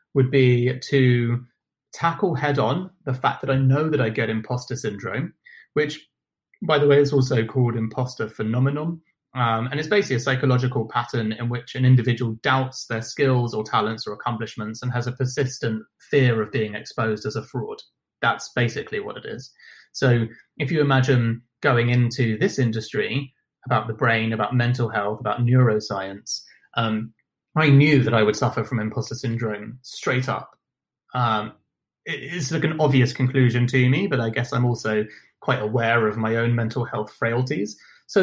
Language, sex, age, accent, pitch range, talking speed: English, male, 30-49, British, 115-145 Hz, 170 wpm